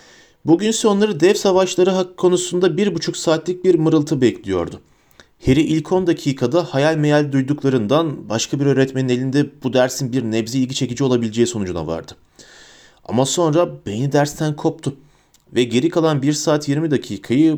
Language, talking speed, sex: Turkish, 150 wpm, male